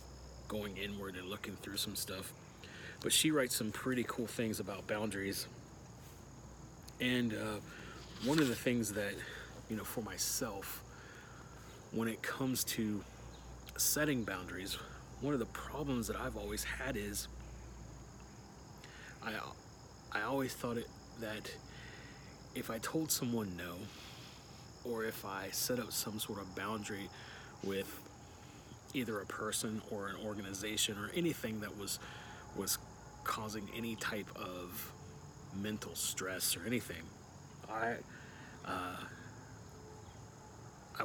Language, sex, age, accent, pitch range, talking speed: English, male, 30-49, American, 100-115 Hz, 125 wpm